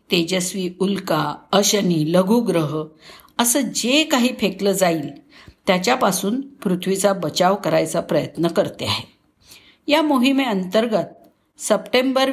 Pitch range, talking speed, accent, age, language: 185-250 Hz, 90 wpm, native, 50-69, Marathi